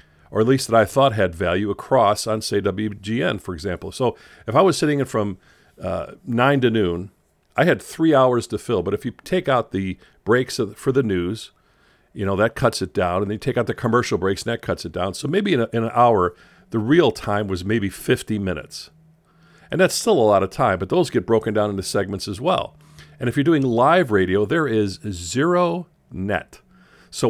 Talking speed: 225 wpm